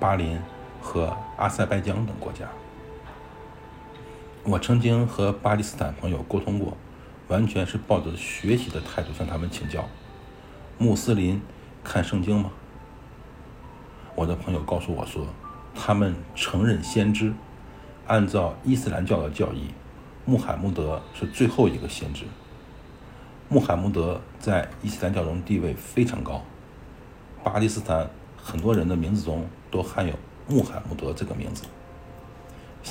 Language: Chinese